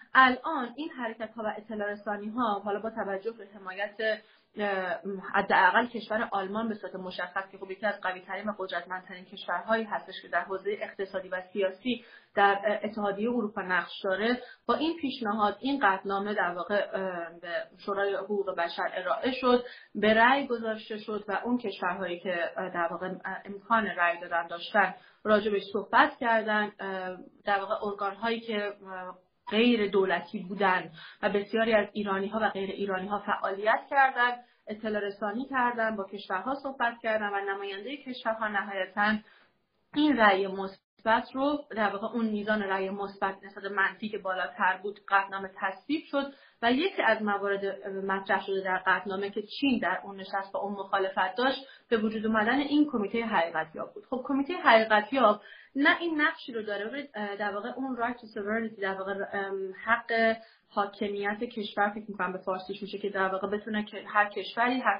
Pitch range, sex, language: 195-225 Hz, female, Persian